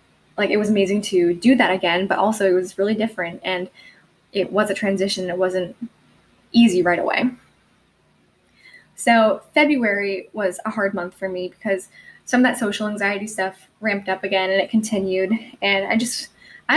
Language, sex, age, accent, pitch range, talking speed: English, female, 10-29, American, 190-230 Hz, 175 wpm